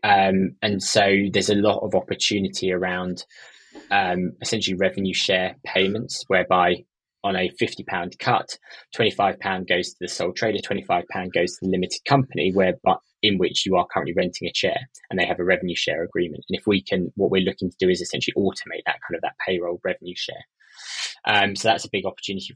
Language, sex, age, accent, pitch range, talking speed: English, male, 20-39, British, 90-100 Hz, 195 wpm